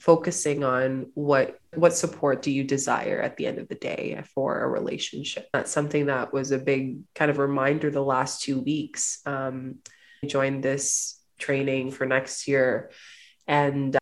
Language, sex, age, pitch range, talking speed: English, female, 20-39, 135-145 Hz, 165 wpm